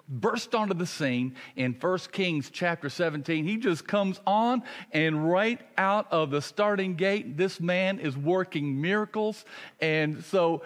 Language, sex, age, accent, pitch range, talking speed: English, male, 50-69, American, 150-195 Hz, 150 wpm